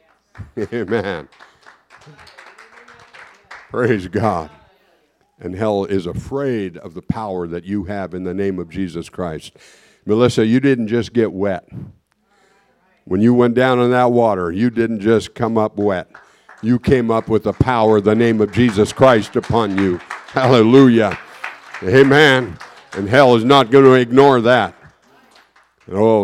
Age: 60-79